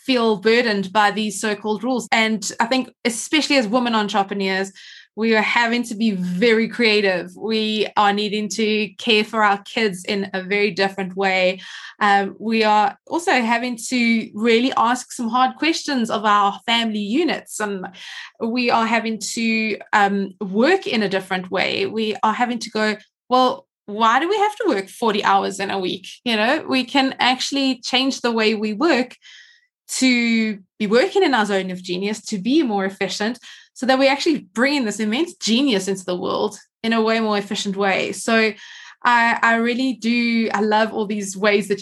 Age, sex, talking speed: 20-39, female, 180 wpm